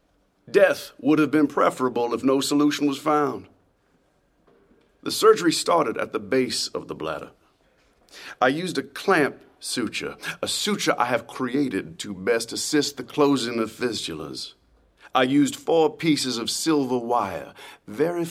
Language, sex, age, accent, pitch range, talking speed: English, male, 50-69, American, 120-150 Hz, 145 wpm